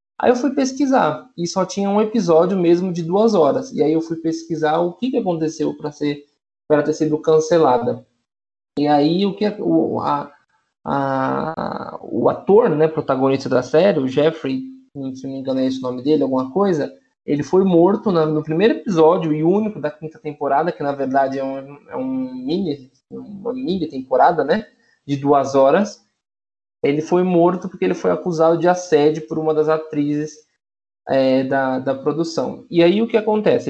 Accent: Brazilian